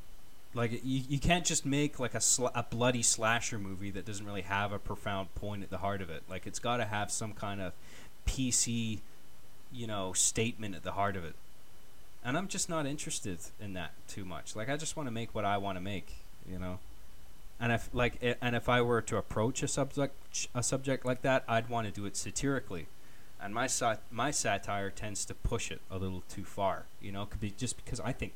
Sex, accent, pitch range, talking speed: male, American, 90-115 Hz, 230 wpm